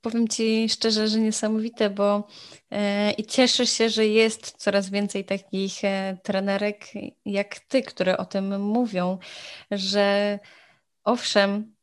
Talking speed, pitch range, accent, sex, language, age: 125 wpm, 195-220 Hz, native, female, Polish, 20-39